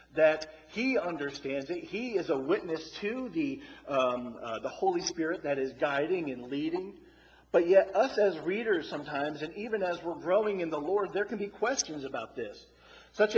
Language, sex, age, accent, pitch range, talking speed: English, male, 40-59, American, 155-205 Hz, 185 wpm